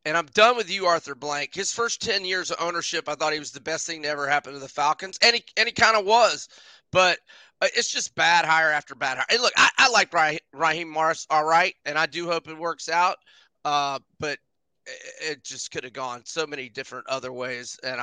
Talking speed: 240 wpm